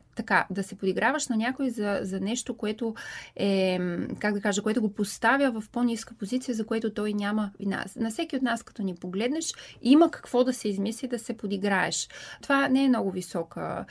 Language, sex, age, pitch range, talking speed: Bulgarian, female, 20-39, 195-230 Hz, 195 wpm